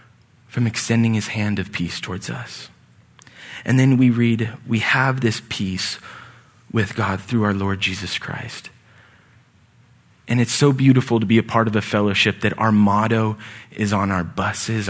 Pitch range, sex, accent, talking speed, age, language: 110-135 Hz, male, American, 165 wpm, 20-39, English